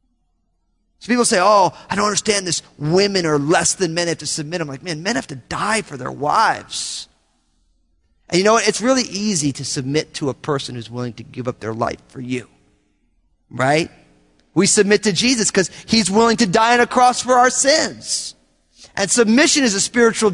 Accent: American